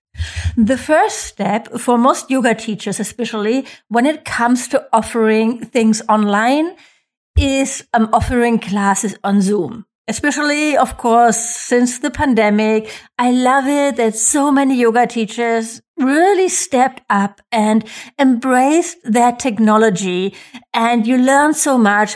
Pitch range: 215-270 Hz